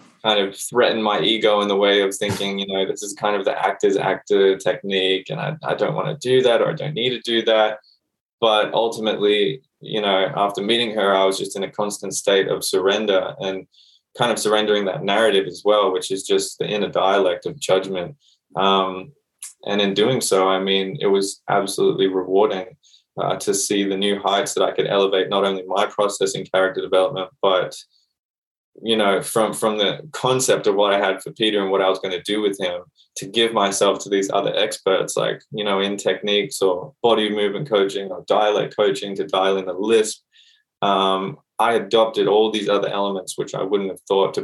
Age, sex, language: 20-39, male, English